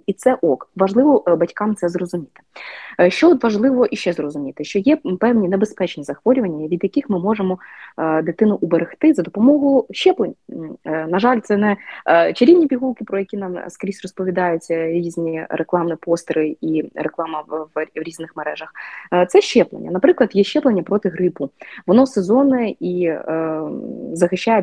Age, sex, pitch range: 20-39, female, 170-240 Hz